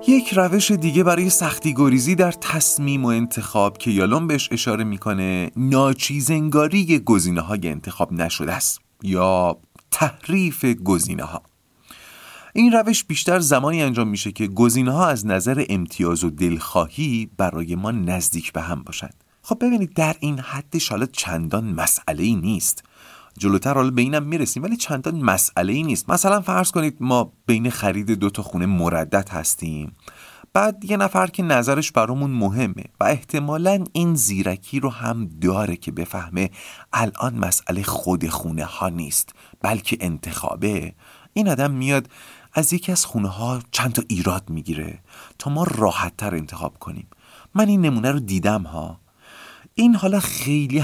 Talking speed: 145 wpm